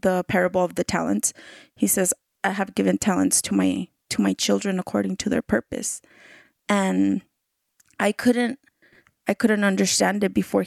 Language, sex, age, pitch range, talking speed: English, female, 20-39, 180-215 Hz, 155 wpm